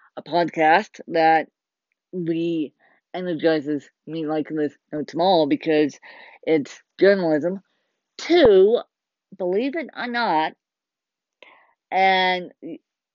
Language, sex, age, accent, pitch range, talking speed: English, female, 40-59, American, 165-220 Hz, 80 wpm